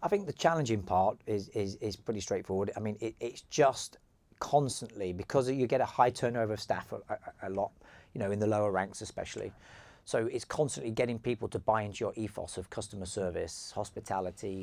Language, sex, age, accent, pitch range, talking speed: English, male, 40-59, British, 95-115 Hz, 200 wpm